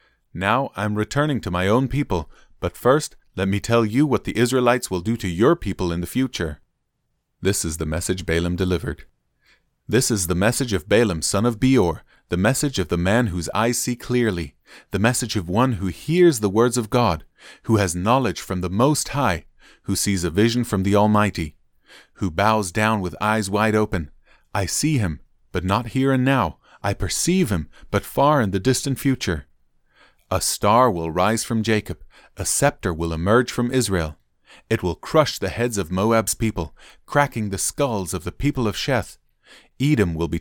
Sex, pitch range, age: male, 90-120 Hz, 30-49